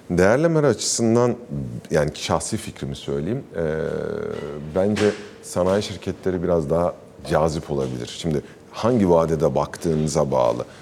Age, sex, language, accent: 50-69, male, Turkish, native